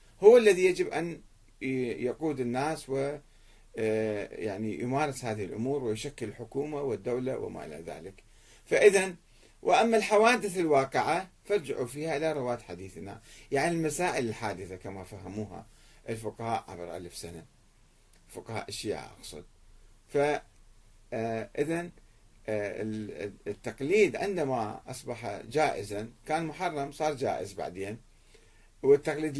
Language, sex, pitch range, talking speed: Arabic, male, 110-155 Hz, 105 wpm